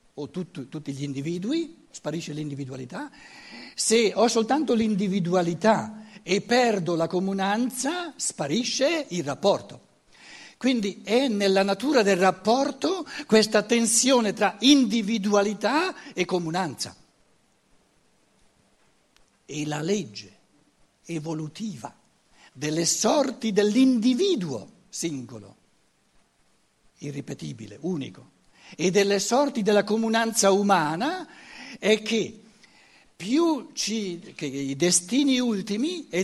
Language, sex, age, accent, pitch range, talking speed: Italian, male, 60-79, native, 175-255 Hz, 90 wpm